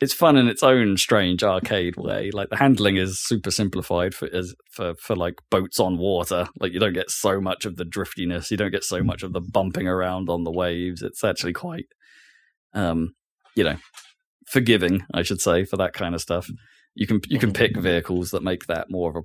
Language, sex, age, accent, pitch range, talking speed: English, male, 20-39, British, 90-115 Hz, 215 wpm